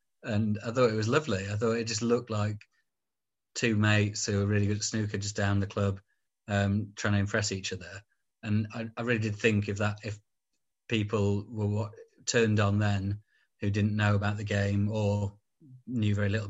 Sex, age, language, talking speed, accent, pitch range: male, 30-49, English, 195 wpm, British, 105-115 Hz